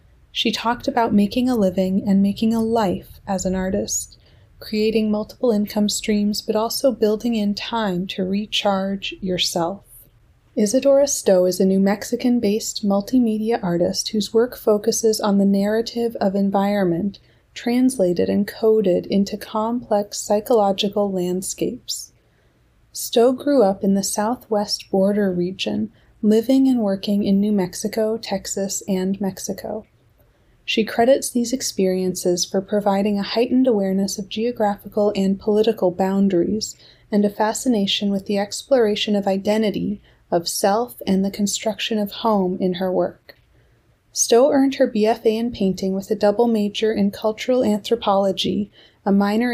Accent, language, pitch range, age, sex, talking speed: American, English, 195-225 Hz, 30-49, female, 135 wpm